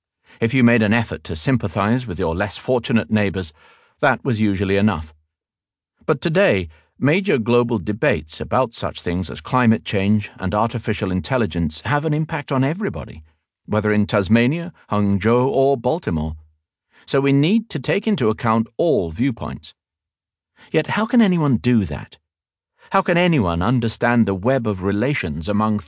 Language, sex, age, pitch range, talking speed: Arabic, male, 50-69, 90-130 Hz, 150 wpm